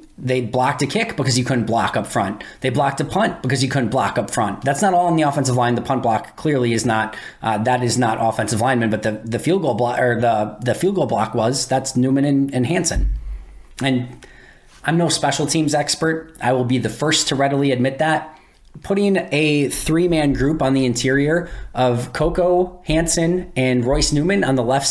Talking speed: 210 wpm